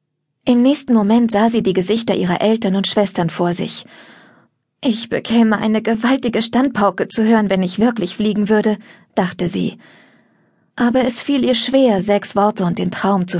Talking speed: 170 wpm